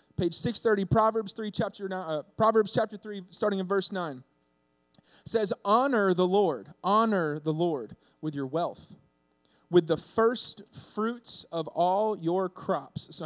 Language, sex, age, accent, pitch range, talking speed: English, male, 20-39, American, 165-210 Hz, 155 wpm